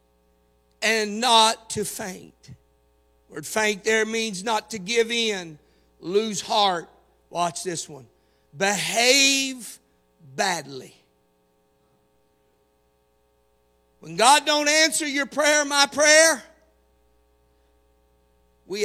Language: English